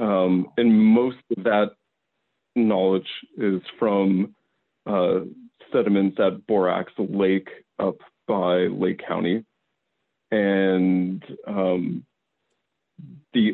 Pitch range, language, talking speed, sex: 95-105 Hz, English, 90 wpm, male